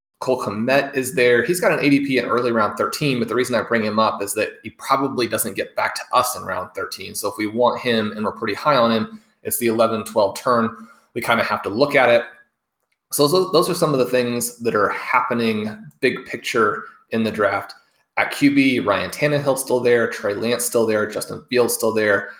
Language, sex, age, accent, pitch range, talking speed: English, male, 20-39, American, 110-135 Hz, 225 wpm